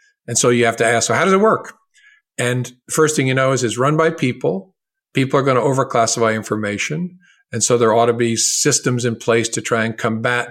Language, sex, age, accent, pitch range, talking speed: English, male, 50-69, American, 115-155 Hz, 230 wpm